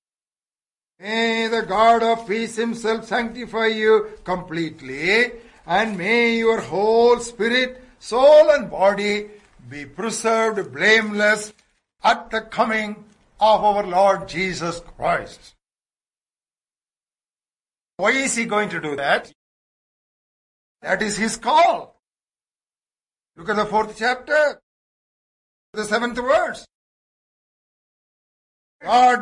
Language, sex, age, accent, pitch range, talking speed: English, male, 60-79, Indian, 195-230 Hz, 100 wpm